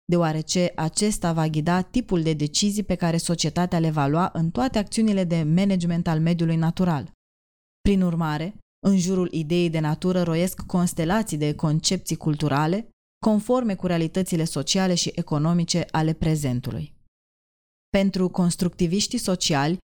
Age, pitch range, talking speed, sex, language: 20-39, 155-185 Hz, 135 wpm, female, Romanian